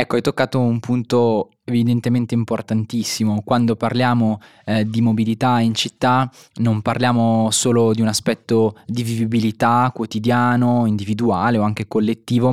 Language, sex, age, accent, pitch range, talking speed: Italian, male, 20-39, native, 105-120 Hz, 130 wpm